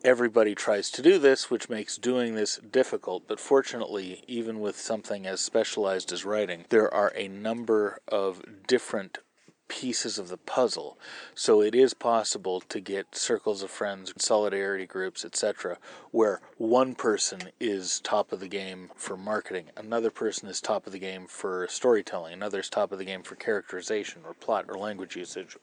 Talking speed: 170 wpm